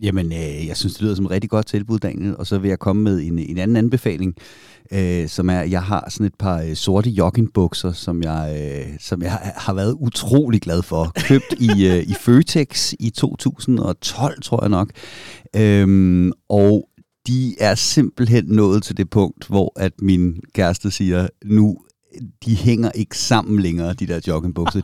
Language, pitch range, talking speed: Danish, 90-110 Hz, 185 wpm